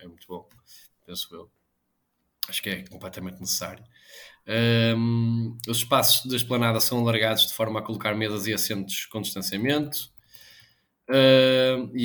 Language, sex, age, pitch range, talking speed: Portuguese, male, 20-39, 100-120 Hz, 130 wpm